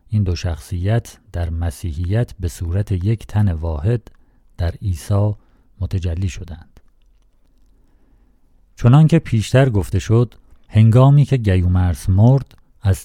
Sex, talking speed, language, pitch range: male, 105 wpm, Persian, 90-115 Hz